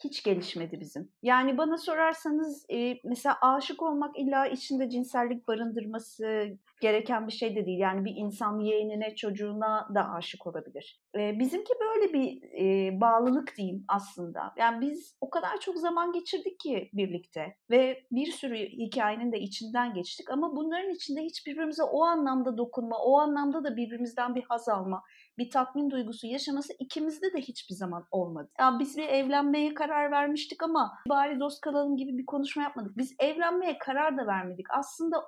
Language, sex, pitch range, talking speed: Turkish, female, 225-310 Hz, 160 wpm